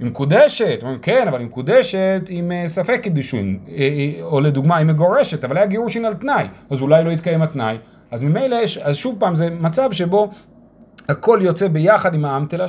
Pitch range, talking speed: 145-205 Hz, 130 wpm